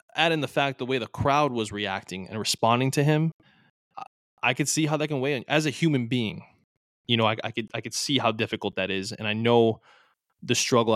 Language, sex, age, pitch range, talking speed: English, male, 20-39, 110-130 Hz, 235 wpm